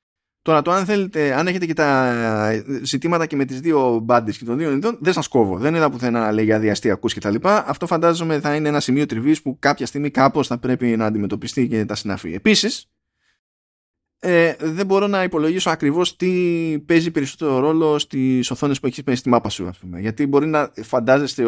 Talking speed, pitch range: 205 wpm, 115-150 Hz